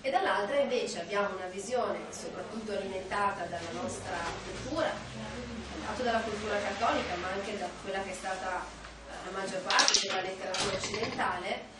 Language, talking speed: Italian, 140 wpm